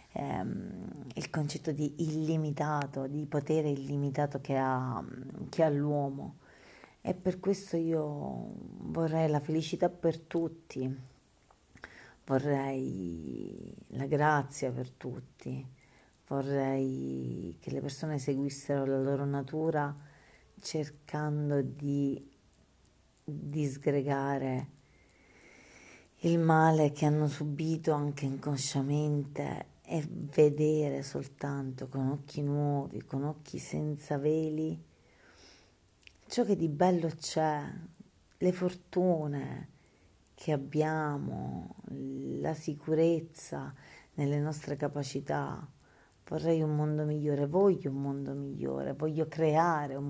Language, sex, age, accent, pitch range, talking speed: Italian, female, 40-59, native, 140-160 Hz, 95 wpm